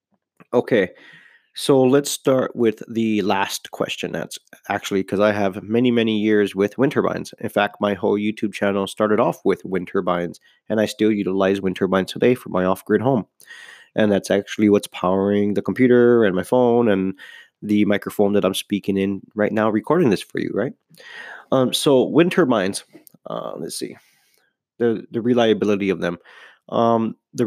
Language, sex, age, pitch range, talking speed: English, male, 20-39, 95-110 Hz, 175 wpm